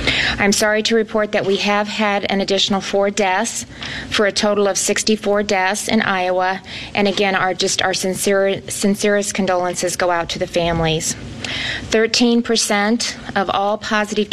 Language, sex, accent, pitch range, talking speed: English, female, American, 185-205 Hz, 160 wpm